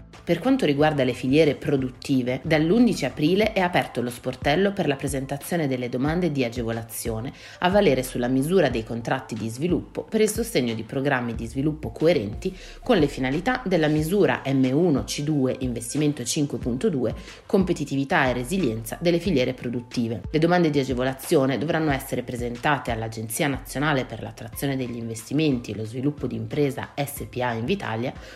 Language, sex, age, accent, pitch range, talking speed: Italian, female, 30-49, native, 125-170 Hz, 145 wpm